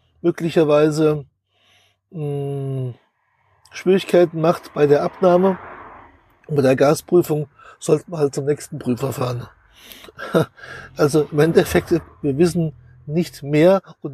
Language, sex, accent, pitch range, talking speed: German, male, German, 145-175 Hz, 110 wpm